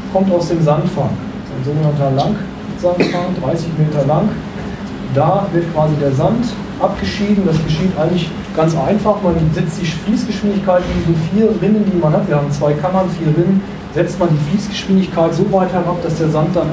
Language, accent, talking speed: German, German, 185 wpm